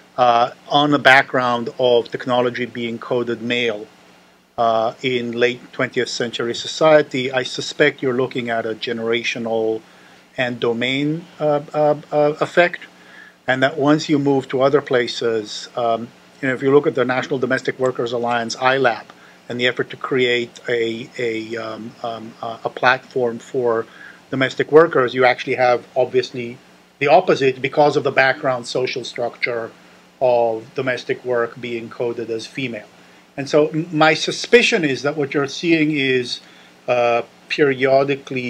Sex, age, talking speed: male, 50-69, 145 wpm